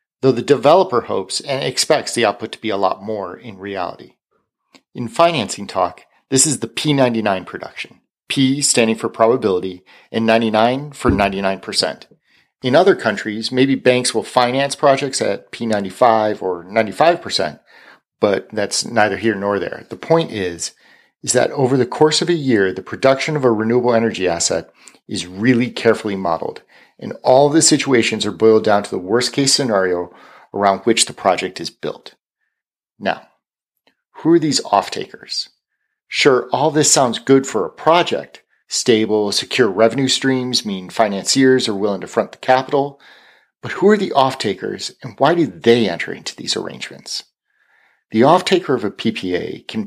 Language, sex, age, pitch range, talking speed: English, male, 40-59, 105-135 Hz, 160 wpm